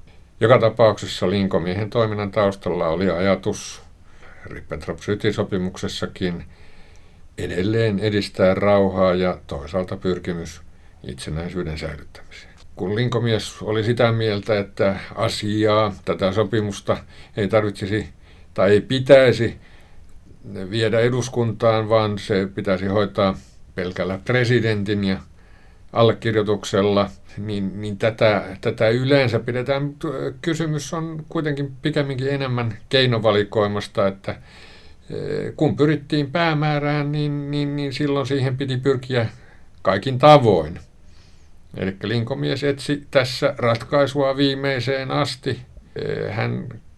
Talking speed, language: 95 wpm, Finnish